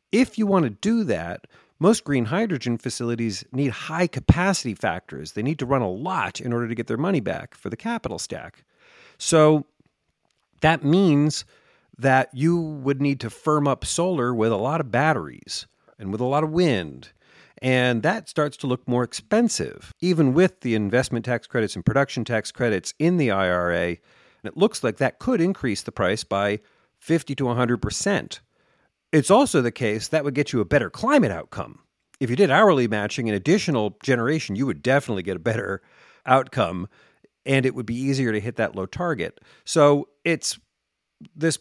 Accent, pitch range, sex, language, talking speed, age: American, 115-160 Hz, male, English, 185 wpm, 40-59